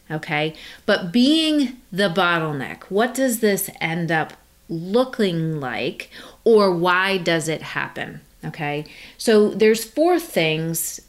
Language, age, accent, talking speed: English, 30-49, American, 120 wpm